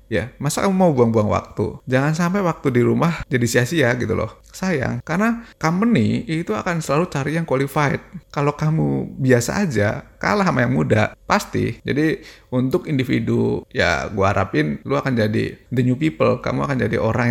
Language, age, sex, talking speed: Indonesian, 20-39, male, 170 wpm